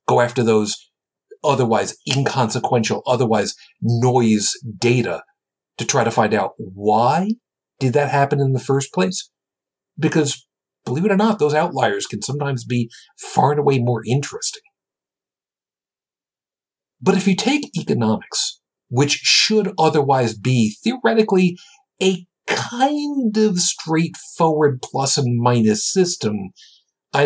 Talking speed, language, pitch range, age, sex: 120 wpm, English, 120-180 Hz, 50-69, male